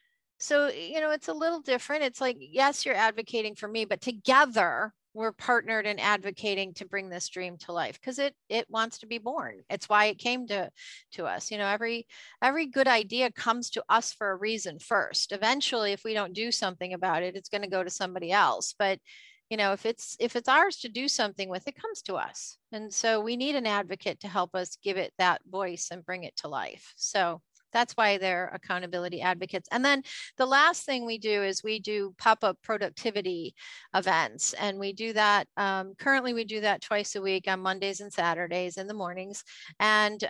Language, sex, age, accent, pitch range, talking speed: English, female, 40-59, American, 195-235 Hz, 210 wpm